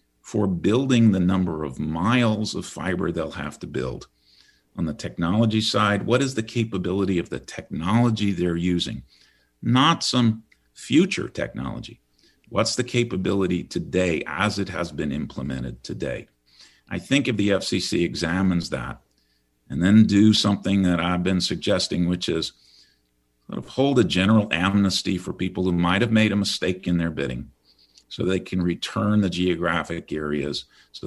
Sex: male